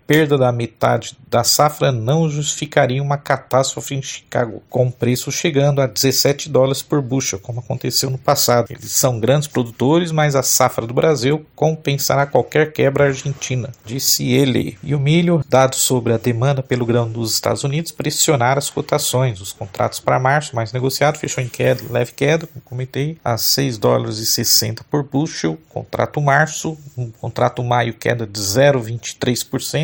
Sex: male